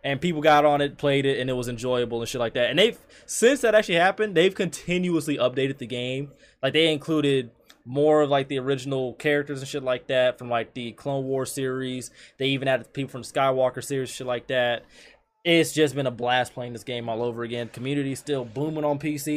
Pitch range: 130-180 Hz